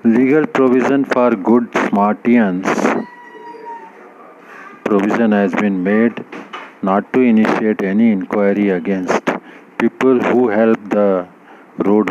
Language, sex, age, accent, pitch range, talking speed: Hindi, male, 50-69, native, 100-125 Hz, 100 wpm